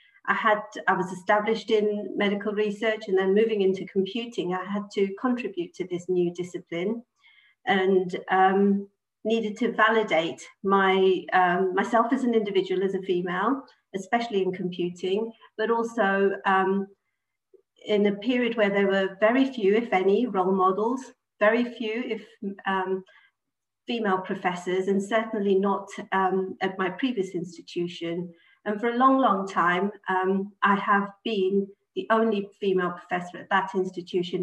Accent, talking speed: British, 145 wpm